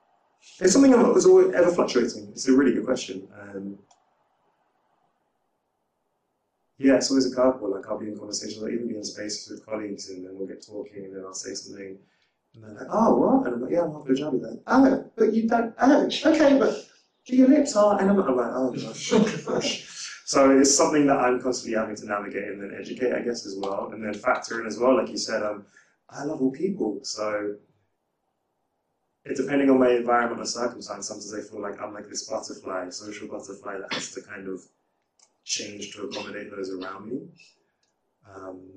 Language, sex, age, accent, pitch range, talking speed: English, male, 20-39, British, 105-140 Hz, 205 wpm